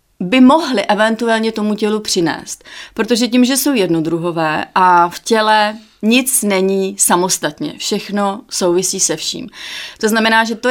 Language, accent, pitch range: Czech, native, 180-220 Hz